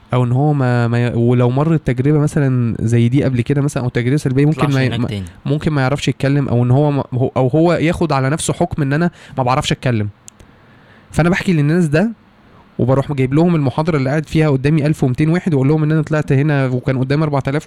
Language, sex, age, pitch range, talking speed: Arabic, male, 20-39, 125-165 Hz, 215 wpm